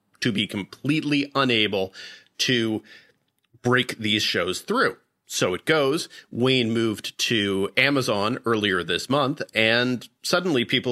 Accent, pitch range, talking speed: American, 100-130 Hz, 120 wpm